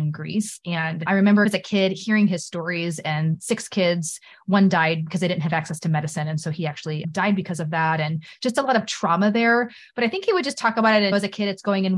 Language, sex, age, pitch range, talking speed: English, female, 20-39, 175-210 Hz, 265 wpm